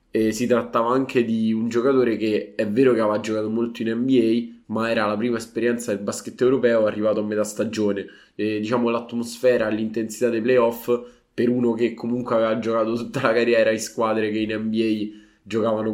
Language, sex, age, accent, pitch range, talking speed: Italian, male, 20-39, native, 105-120 Hz, 175 wpm